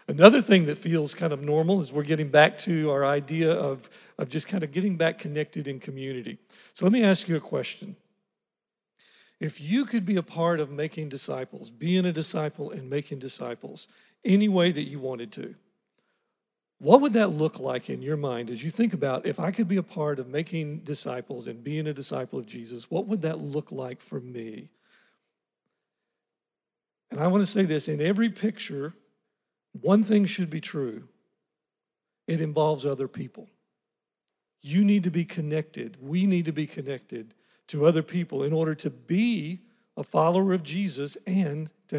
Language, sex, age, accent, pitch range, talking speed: English, male, 50-69, American, 145-180 Hz, 180 wpm